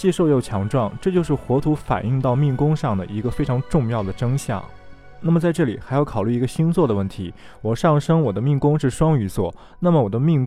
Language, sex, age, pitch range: Chinese, male, 20-39, 105-145 Hz